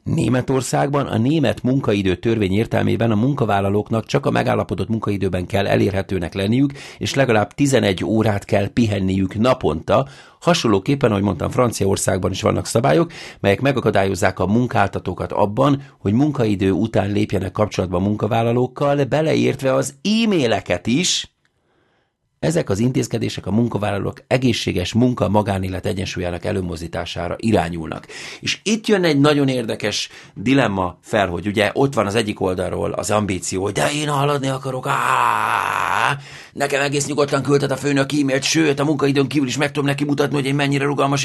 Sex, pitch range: male, 100-140 Hz